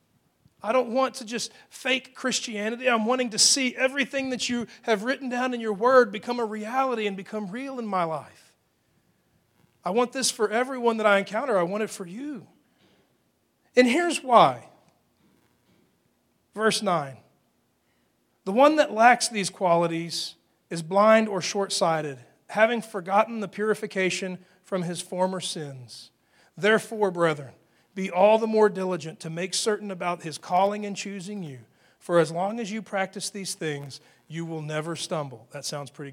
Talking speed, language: 160 wpm, English